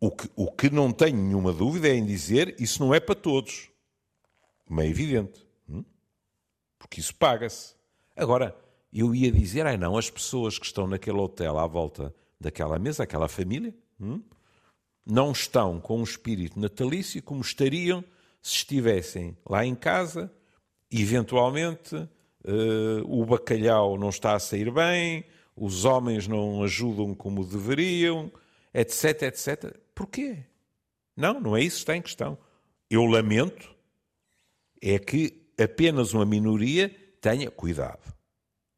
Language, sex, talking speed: Portuguese, male, 135 wpm